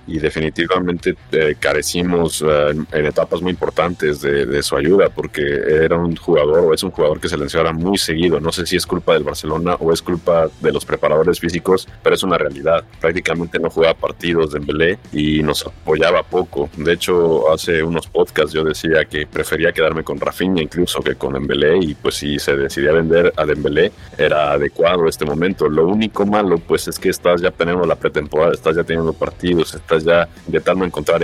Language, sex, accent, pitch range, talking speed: Spanish, male, Mexican, 75-90 Hz, 195 wpm